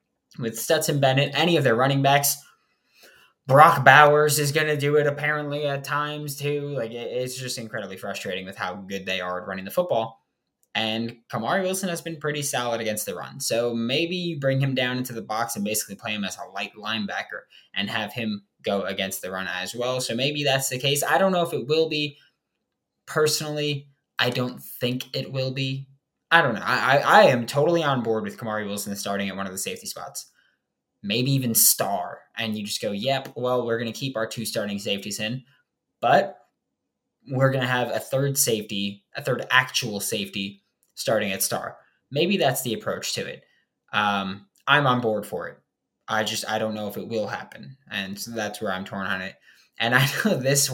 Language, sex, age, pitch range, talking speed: English, male, 20-39, 105-140 Hz, 205 wpm